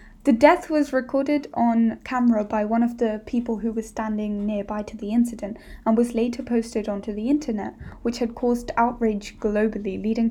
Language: English